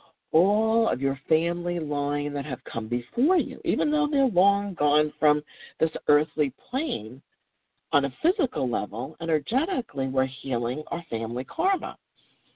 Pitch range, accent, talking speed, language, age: 145-200 Hz, American, 140 wpm, English, 50-69